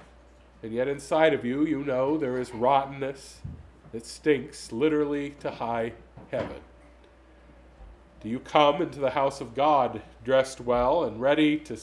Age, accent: 40-59, American